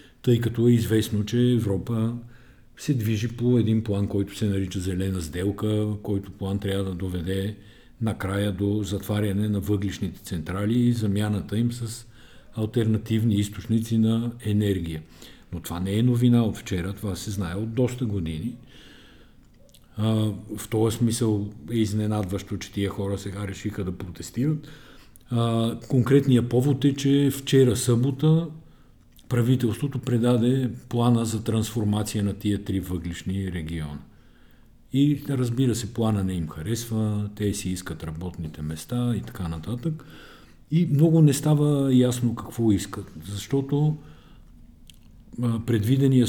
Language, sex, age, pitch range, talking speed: Bulgarian, male, 50-69, 100-120 Hz, 130 wpm